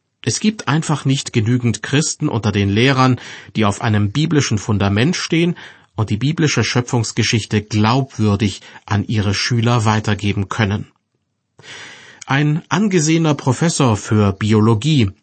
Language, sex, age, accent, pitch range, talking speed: German, male, 40-59, German, 110-135 Hz, 120 wpm